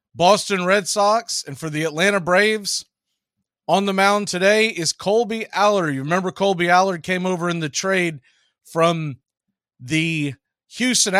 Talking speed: 145 wpm